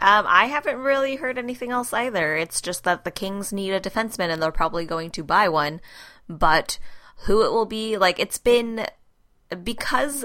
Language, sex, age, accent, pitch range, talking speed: English, female, 10-29, American, 160-195 Hz, 185 wpm